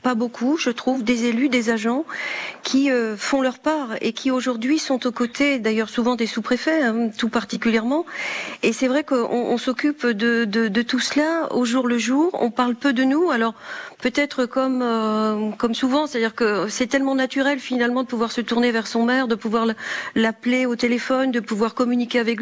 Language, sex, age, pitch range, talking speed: French, female, 40-59, 225-265 Hz, 200 wpm